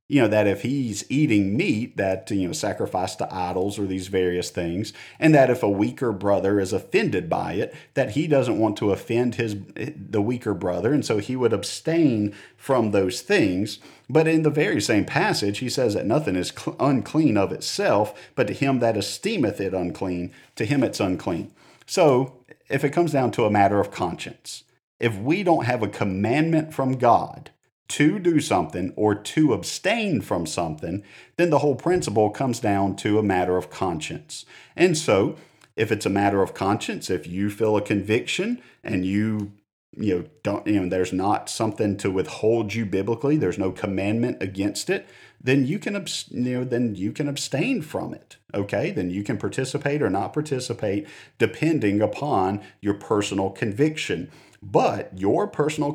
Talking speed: 180 wpm